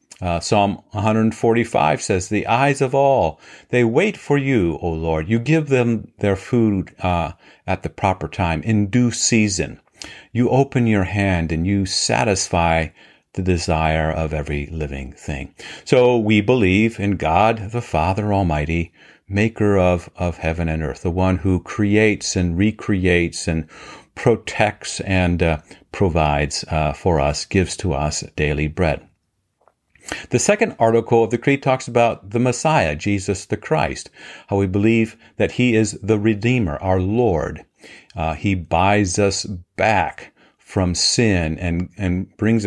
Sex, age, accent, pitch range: male, 50-69, American, 85-115 Hz